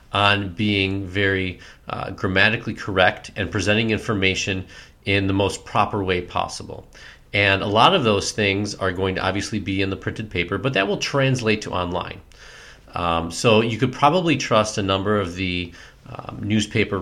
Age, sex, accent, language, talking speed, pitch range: 30-49, male, American, English, 170 wpm, 95-115 Hz